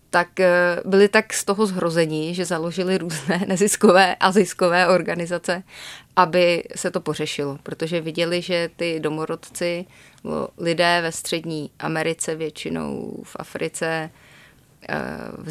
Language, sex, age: Czech, female, 30-49